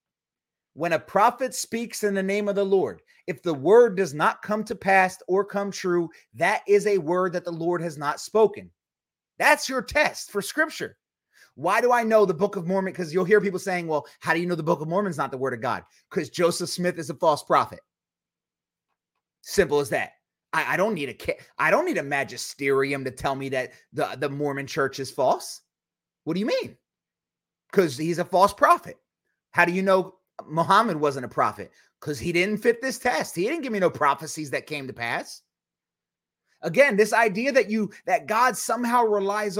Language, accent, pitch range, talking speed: English, American, 165-220 Hz, 200 wpm